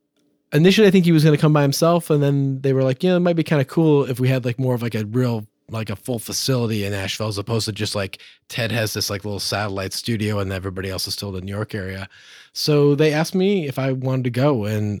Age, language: 30-49, English